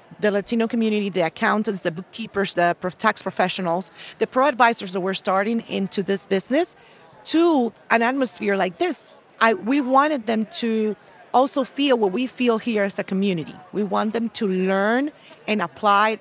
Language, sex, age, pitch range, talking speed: English, female, 40-59, 190-235 Hz, 165 wpm